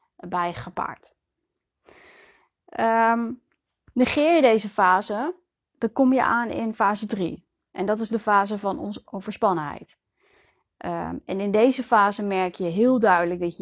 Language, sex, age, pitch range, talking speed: Dutch, female, 20-39, 190-235 Hz, 130 wpm